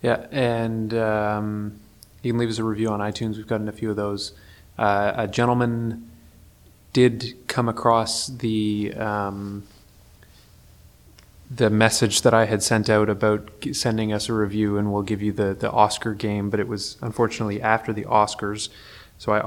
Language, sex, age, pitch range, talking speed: English, male, 20-39, 105-115 Hz, 165 wpm